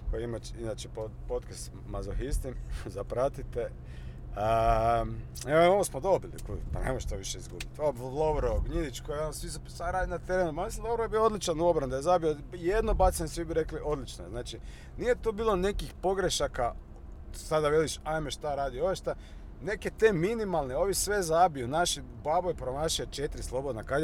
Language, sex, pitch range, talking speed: Croatian, male, 115-180 Hz, 160 wpm